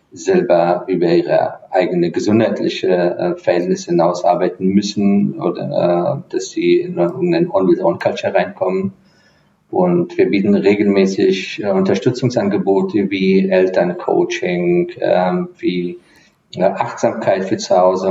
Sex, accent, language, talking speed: male, German, German, 105 wpm